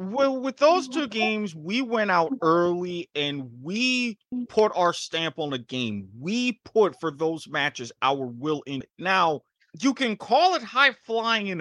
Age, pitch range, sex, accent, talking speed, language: 30-49, 150-210 Hz, male, American, 165 wpm, English